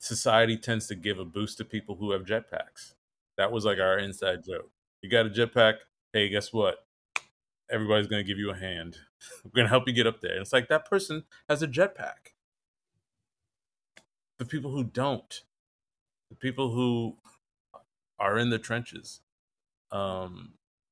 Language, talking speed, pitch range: English, 165 wpm, 100-120 Hz